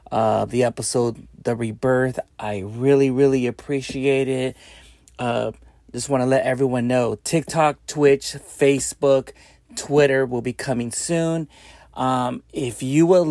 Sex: male